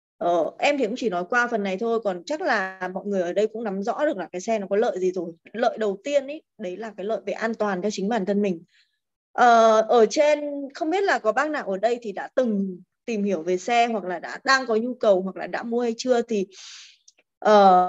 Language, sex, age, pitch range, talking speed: Vietnamese, female, 20-39, 205-265 Hz, 260 wpm